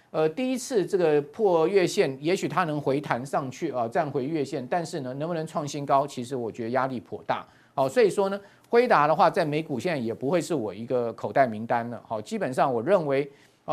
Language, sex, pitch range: Chinese, male, 135-185 Hz